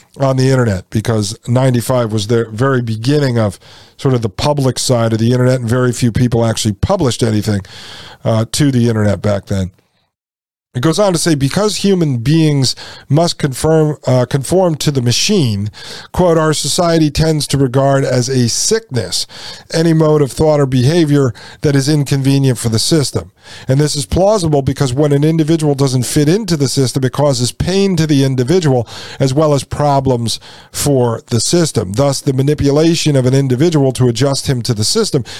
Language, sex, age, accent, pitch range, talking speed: English, male, 50-69, American, 120-150 Hz, 180 wpm